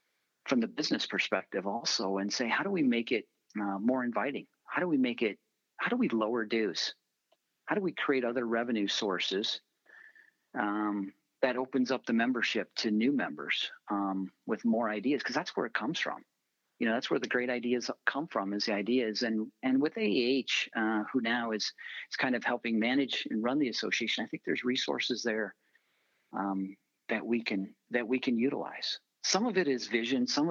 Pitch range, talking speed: 100-125 Hz, 195 wpm